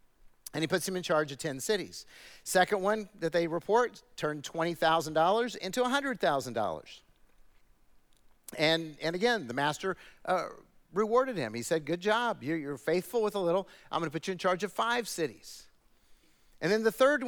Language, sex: English, male